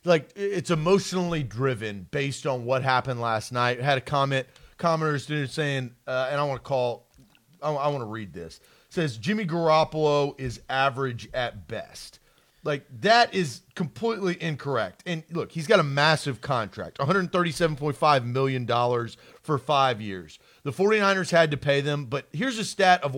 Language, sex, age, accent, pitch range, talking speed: English, male, 40-59, American, 140-195 Hz, 165 wpm